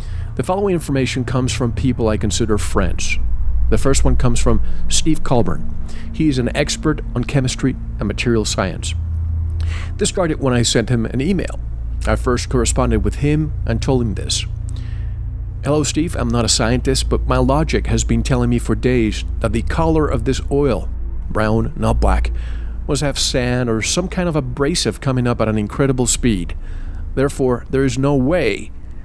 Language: English